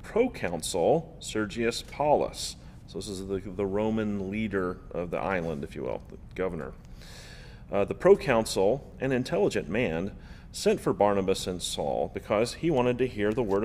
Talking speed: 160 wpm